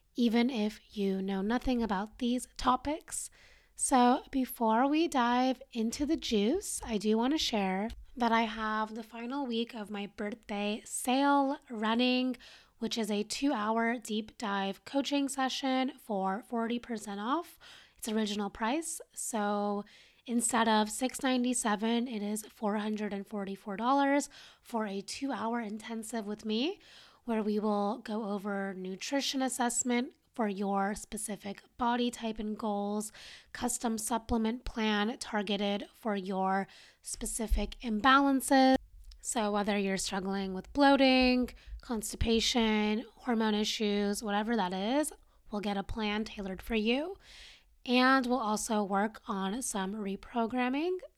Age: 20-39